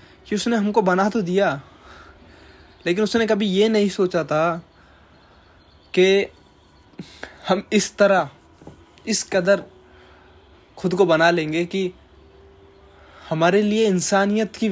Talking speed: 115 wpm